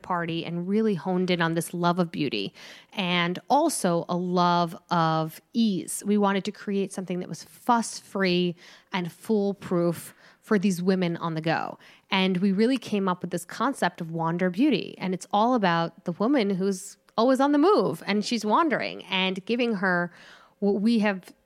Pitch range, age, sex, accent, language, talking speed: 170-215 Hz, 20-39, female, American, English, 175 wpm